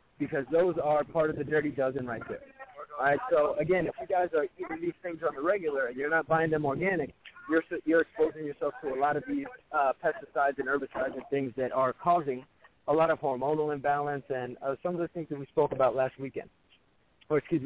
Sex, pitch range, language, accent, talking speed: male, 135-160 Hz, English, American, 230 wpm